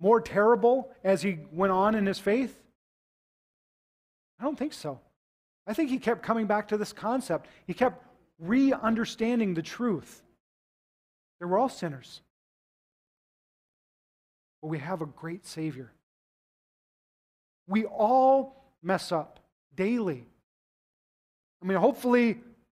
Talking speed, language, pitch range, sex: 120 wpm, English, 175-225 Hz, male